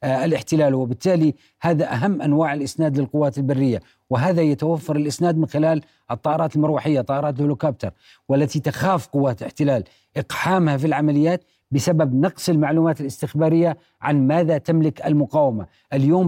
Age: 40-59